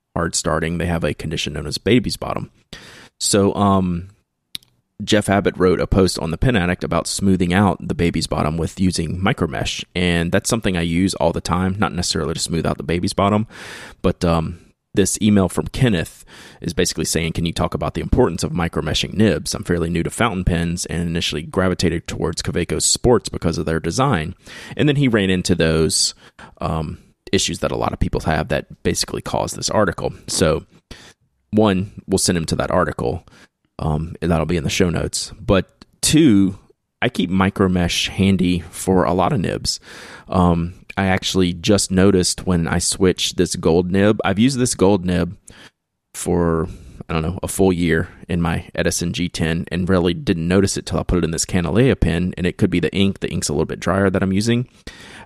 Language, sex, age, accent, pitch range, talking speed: English, male, 30-49, American, 85-95 Hz, 200 wpm